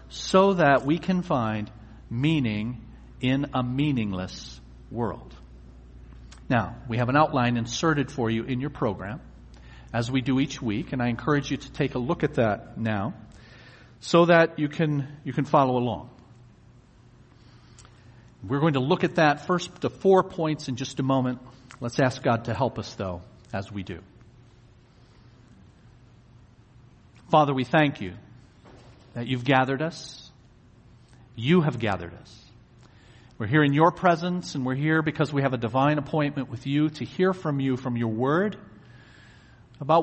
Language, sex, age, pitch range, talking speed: English, male, 50-69, 115-145 Hz, 155 wpm